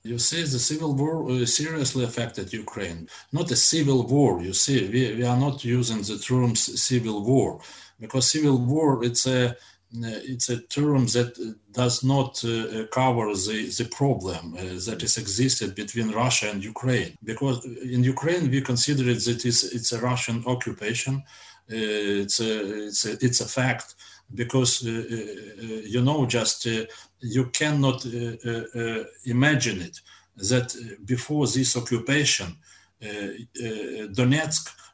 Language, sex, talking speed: English, male, 150 wpm